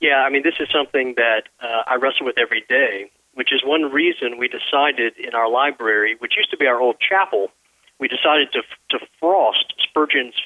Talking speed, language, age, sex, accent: 200 wpm, English, 40-59, male, American